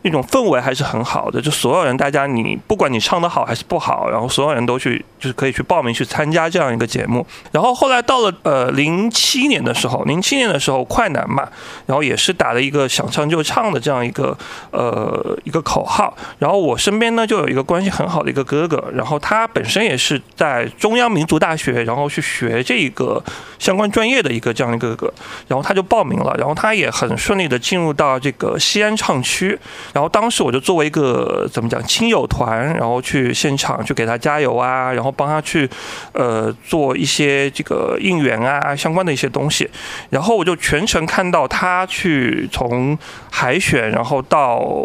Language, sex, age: Chinese, male, 30-49